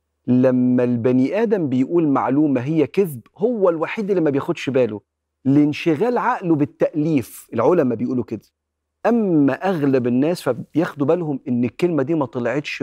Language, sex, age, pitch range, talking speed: Arabic, male, 40-59, 115-170 Hz, 135 wpm